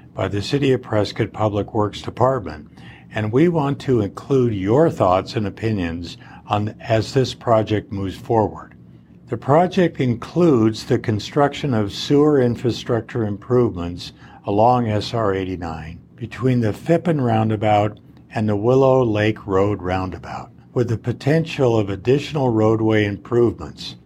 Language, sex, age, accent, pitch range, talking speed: English, male, 60-79, American, 100-130 Hz, 125 wpm